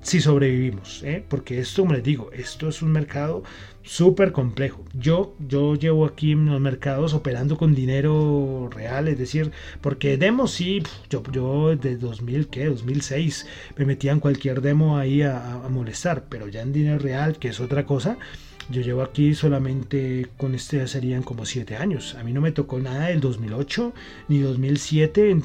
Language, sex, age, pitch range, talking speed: Spanish, male, 30-49, 130-160 Hz, 180 wpm